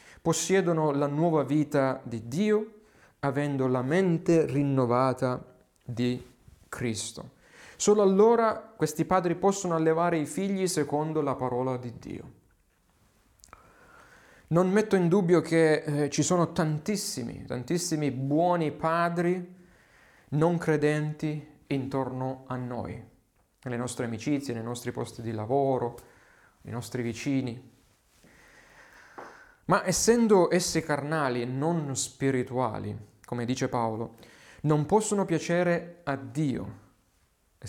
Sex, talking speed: male, 110 wpm